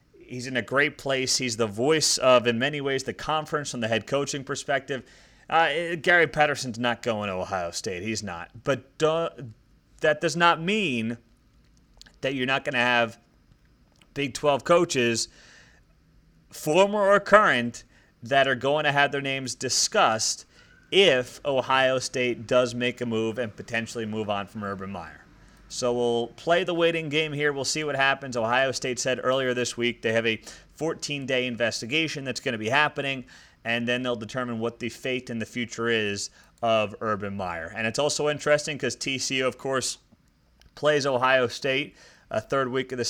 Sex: male